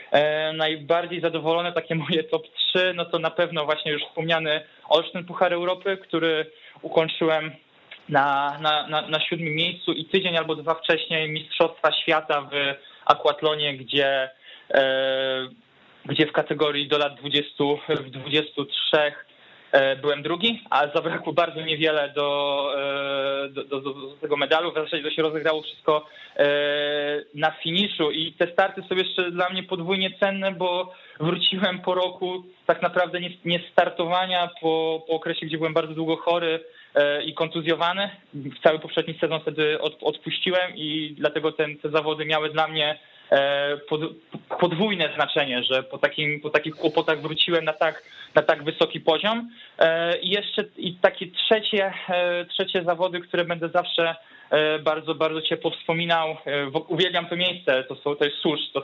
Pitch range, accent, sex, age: 150-170 Hz, native, male, 20-39